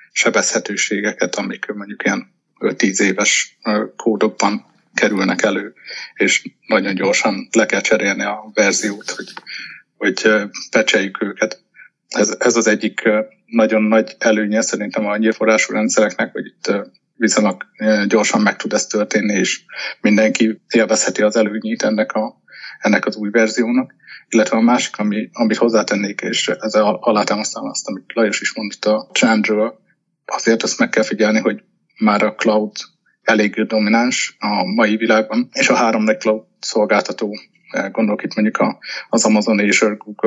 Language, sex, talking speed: Hungarian, male, 135 wpm